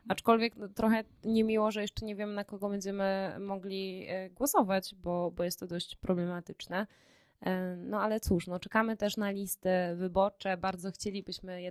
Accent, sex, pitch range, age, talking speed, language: native, female, 180-205 Hz, 20-39, 155 wpm, Polish